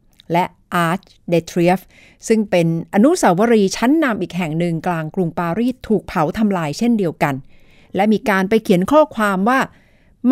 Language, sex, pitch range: Thai, female, 165-235 Hz